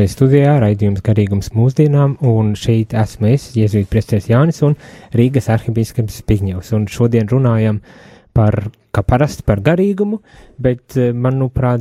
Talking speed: 130 wpm